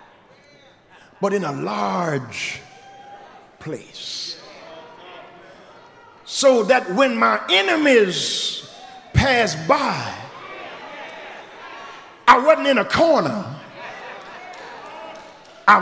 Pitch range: 240-365 Hz